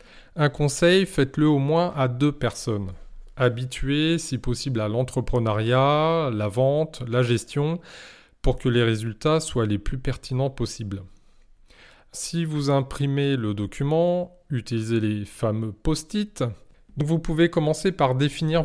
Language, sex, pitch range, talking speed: French, male, 115-155 Hz, 130 wpm